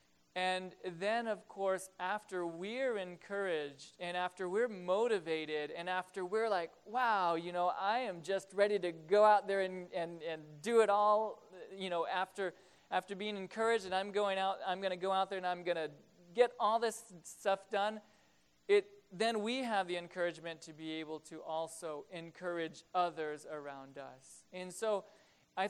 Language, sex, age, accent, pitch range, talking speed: English, male, 40-59, American, 170-205 Hz, 175 wpm